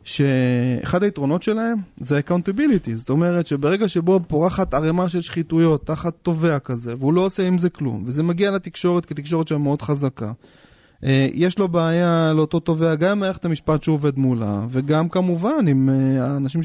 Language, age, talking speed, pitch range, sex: Hebrew, 30-49, 160 wpm, 135-175 Hz, male